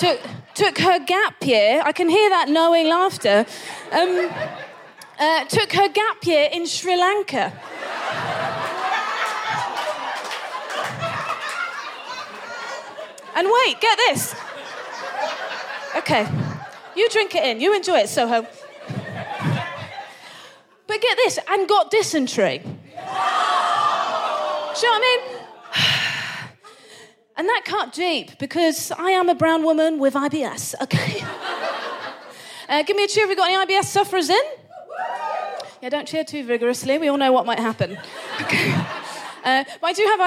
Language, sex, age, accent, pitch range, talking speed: English, female, 30-49, British, 285-390 Hz, 130 wpm